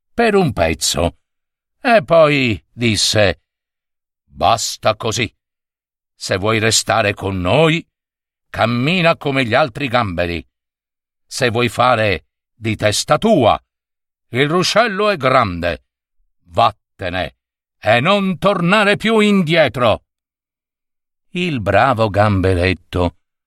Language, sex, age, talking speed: Italian, male, 60-79, 95 wpm